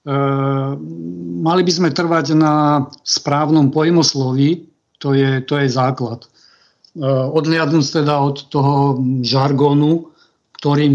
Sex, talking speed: male, 110 wpm